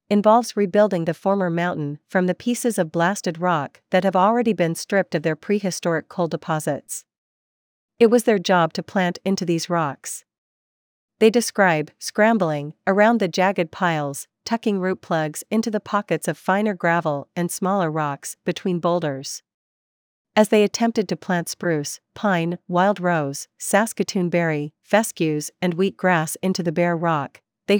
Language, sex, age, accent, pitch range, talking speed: English, female, 40-59, American, 160-200 Hz, 155 wpm